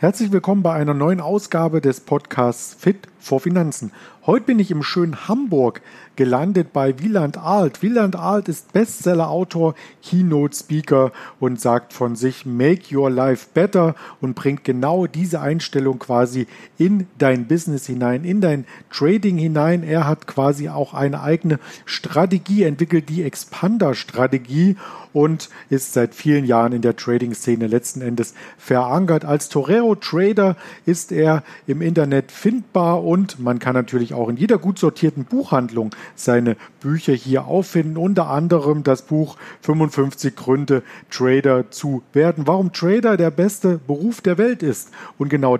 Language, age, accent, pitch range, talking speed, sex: German, 50-69, German, 130-180 Hz, 145 wpm, male